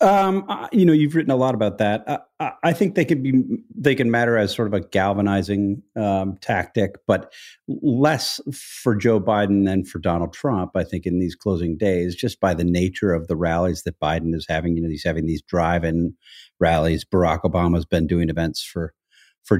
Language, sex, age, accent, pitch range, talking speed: English, male, 40-59, American, 85-110 Hz, 210 wpm